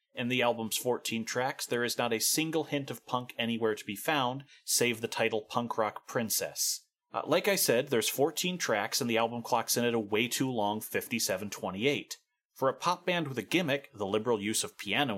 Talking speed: 200 wpm